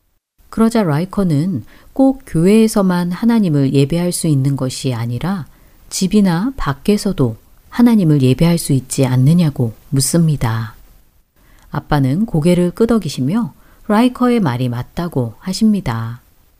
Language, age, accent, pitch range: Korean, 40-59, native, 130-210 Hz